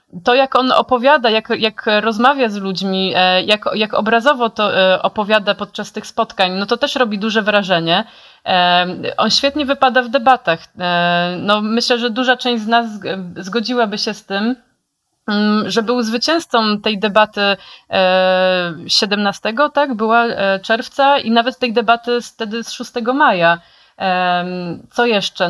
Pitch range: 210-250 Hz